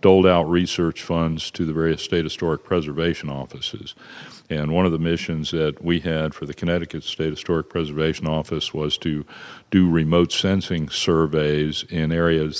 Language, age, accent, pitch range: English, 50-69, American, 75-85 Hz